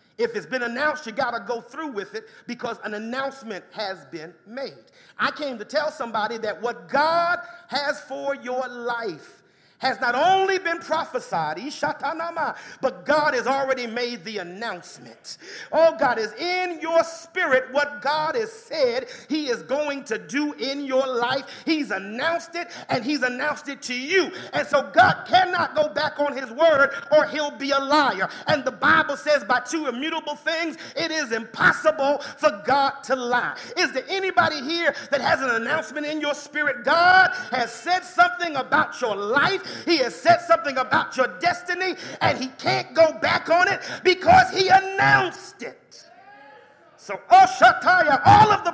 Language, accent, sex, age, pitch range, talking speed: English, American, male, 40-59, 250-335 Hz, 170 wpm